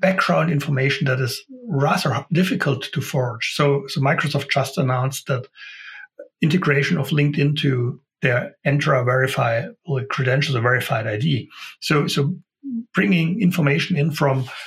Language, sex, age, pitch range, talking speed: English, male, 60-79, 135-180 Hz, 130 wpm